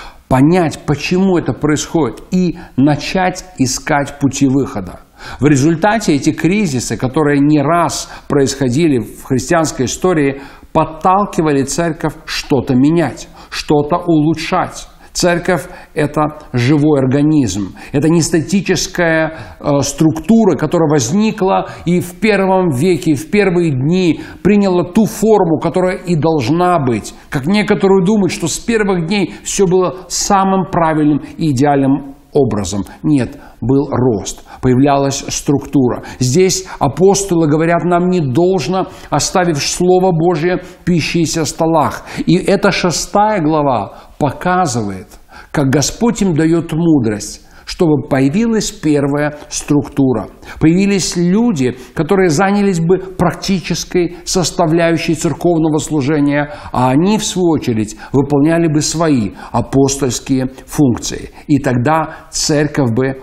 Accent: native